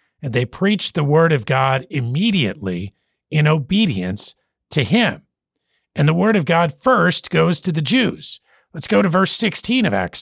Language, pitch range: English, 140-190 Hz